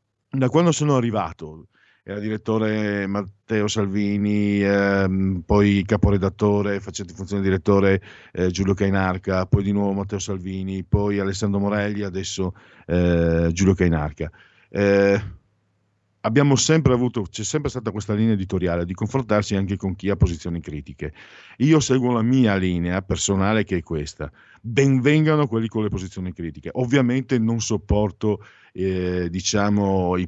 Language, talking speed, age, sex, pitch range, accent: Italian, 135 wpm, 50-69, male, 90-110 Hz, native